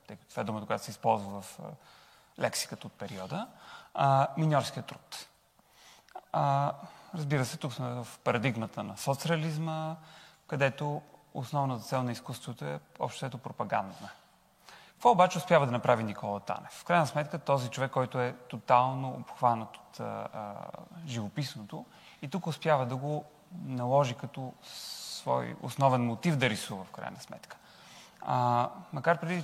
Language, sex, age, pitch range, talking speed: Bulgarian, male, 30-49, 125-155 Hz, 145 wpm